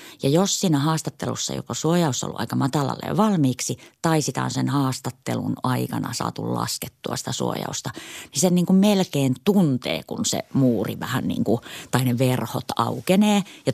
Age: 30-49